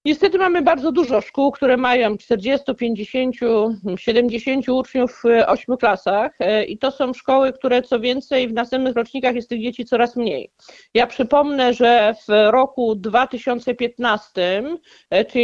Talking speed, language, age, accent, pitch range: 135 wpm, Polish, 50-69, native, 225-270 Hz